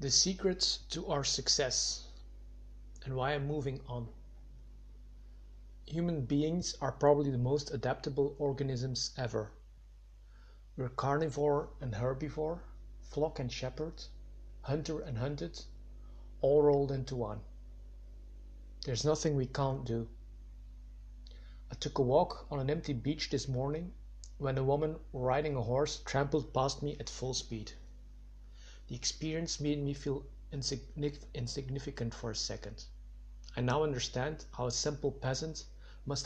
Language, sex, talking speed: English, male, 125 wpm